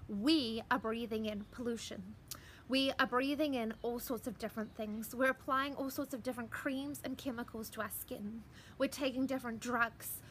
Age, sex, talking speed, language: 20-39, female, 175 wpm, English